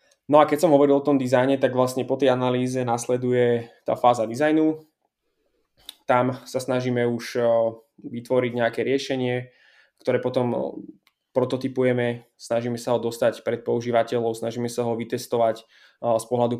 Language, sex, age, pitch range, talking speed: Slovak, male, 20-39, 120-130 Hz, 140 wpm